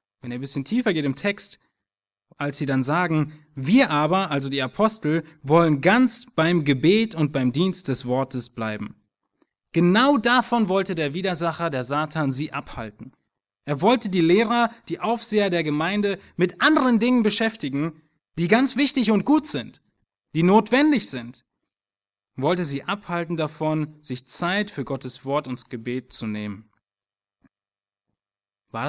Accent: German